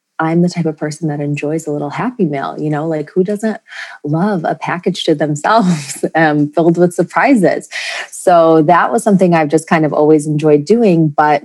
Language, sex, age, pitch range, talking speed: English, female, 20-39, 150-175 Hz, 195 wpm